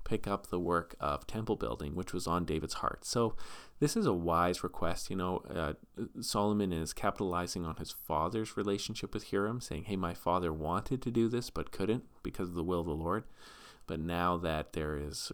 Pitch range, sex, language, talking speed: 75-100 Hz, male, English, 205 wpm